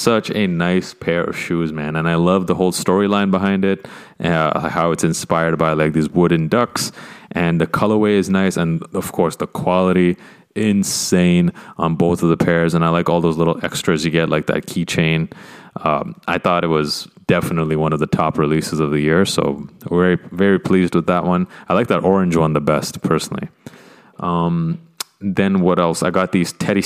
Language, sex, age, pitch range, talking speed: English, male, 20-39, 85-100 Hz, 200 wpm